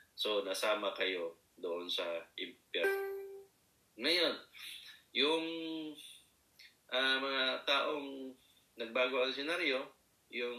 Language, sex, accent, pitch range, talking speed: Filipino, male, native, 105-135 Hz, 85 wpm